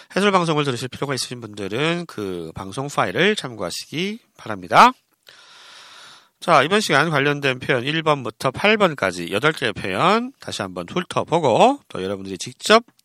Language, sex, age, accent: Korean, male, 40-59, native